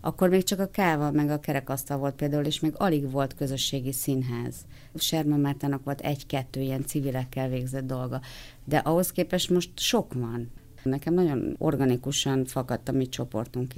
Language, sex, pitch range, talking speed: Hungarian, female, 130-155 Hz, 160 wpm